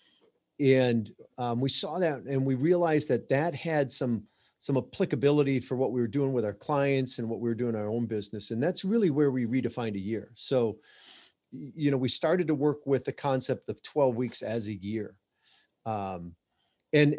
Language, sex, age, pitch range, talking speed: English, male, 40-59, 120-155 Hz, 200 wpm